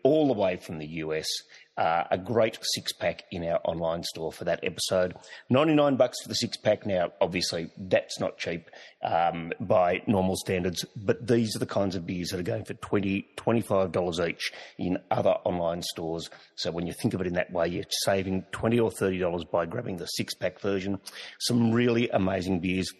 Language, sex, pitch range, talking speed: English, male, 90-115 Hz, 195 wpm